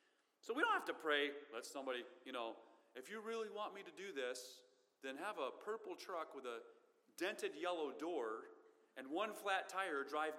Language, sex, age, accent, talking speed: English, male, 40-59, American, 190 wpm